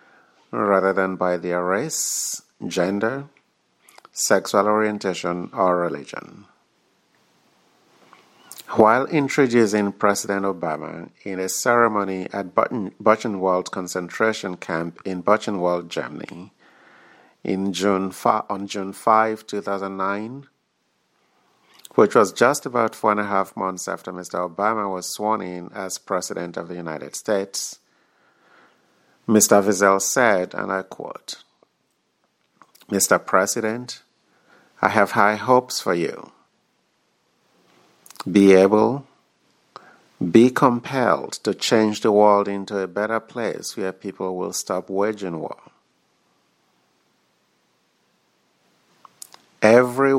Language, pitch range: English, 95-110 Hz